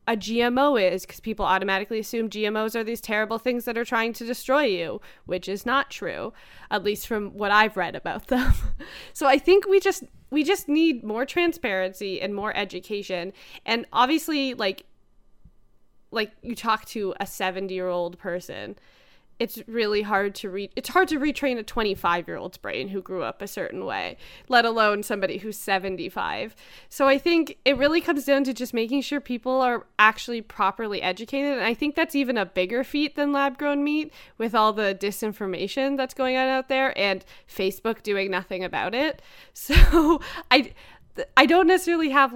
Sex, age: female, 20-39